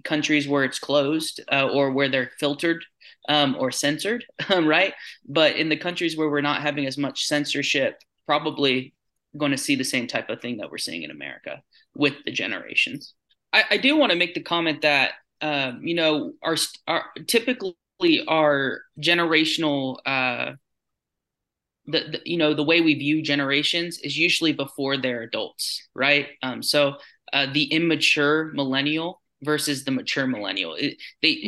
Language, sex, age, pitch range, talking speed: English, male, 20-39, 140-160 Hz, 165 wpm